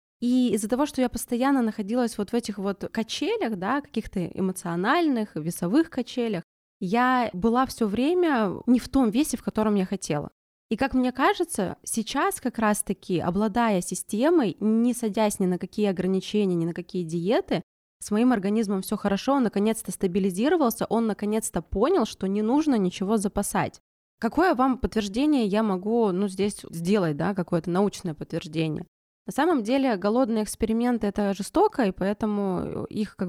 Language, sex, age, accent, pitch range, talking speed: Russian, female, 20-39, native, 195-245 Hz, 155 wpm